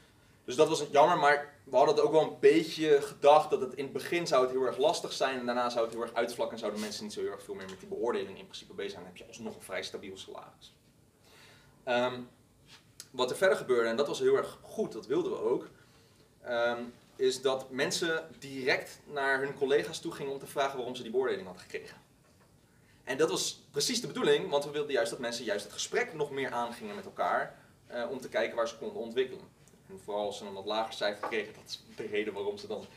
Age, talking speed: 30-49, 245 wpm